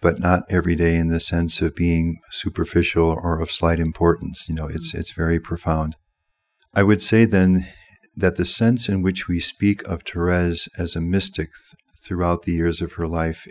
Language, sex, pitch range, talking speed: English, male, 85-95 Hz, 190 wpm